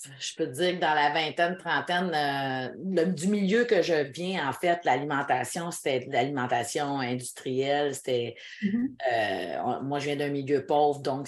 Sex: female